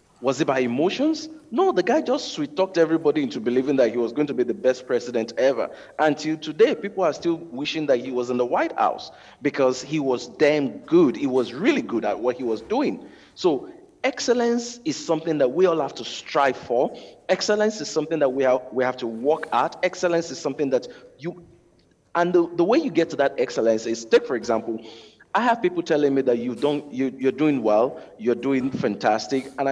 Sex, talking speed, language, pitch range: male, 210 wpm, English, 125-175 Hz